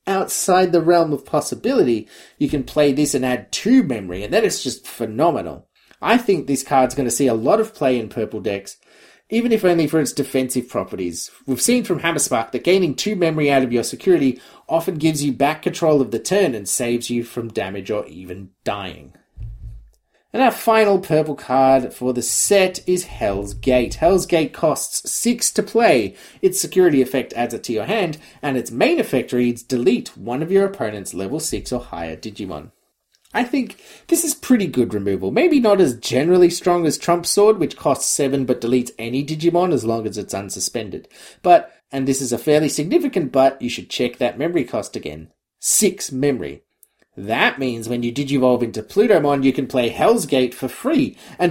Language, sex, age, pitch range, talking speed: English, male, 30-49, 120-180 Hz, 195 wpm